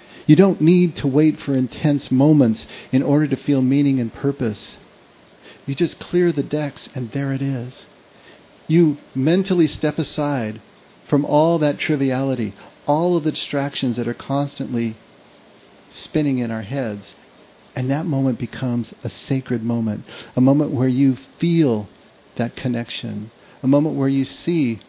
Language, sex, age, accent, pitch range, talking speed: English, male, 50-69, American, 125-155 Hz, 150 wpm